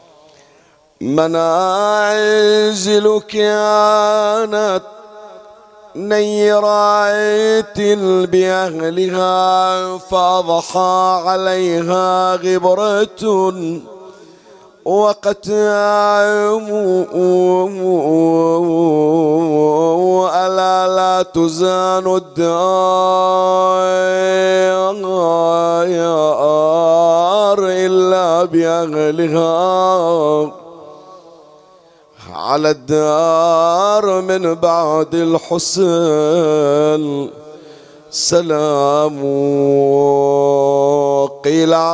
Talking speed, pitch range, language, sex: 30 wpm, 165-205 Hz, Arabic, male